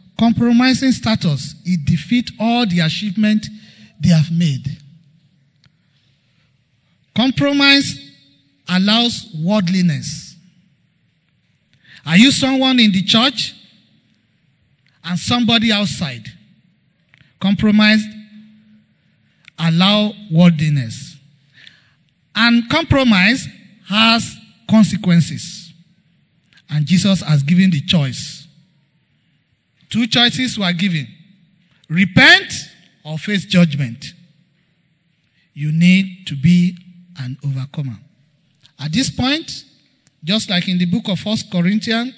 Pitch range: 155-210 Hz